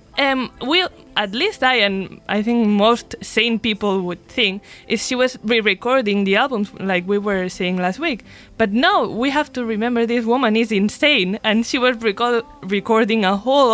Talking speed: 185 wpm